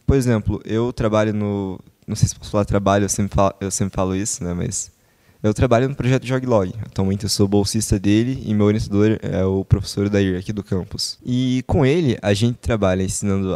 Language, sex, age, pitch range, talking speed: Portuguese, male, 20-39, 100-125 Hz, 210 wpm